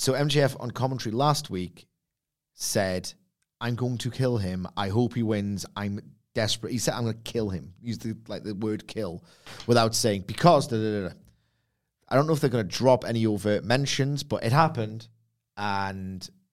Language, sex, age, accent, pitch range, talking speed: English, male, 30-49, British, 100-125 Hz, 190 wpm